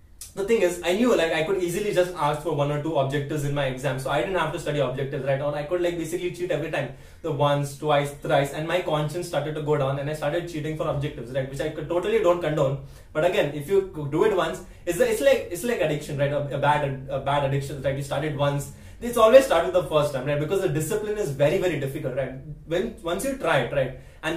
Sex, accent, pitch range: male, Indian, 145-180 Hz